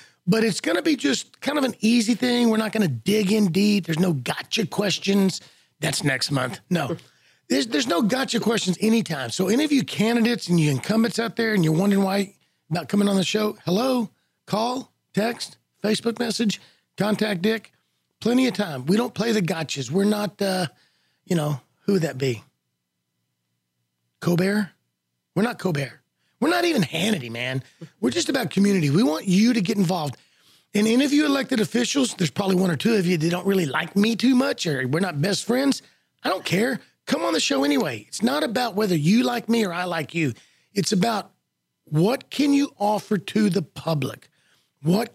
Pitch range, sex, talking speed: 160-220 Hz, male, 200 wpm